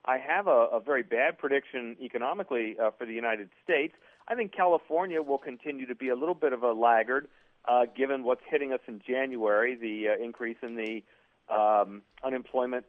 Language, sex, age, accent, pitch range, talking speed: English, male, 40-59, American, 115-150 Hz, 180 wpm